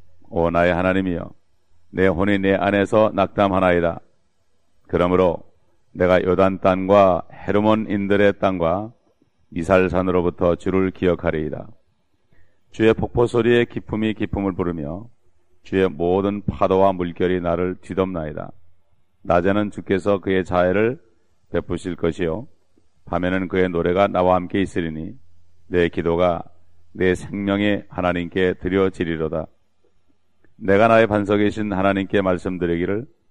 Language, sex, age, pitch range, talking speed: English, male, 40-59, 85-100 Hz, 95 wpm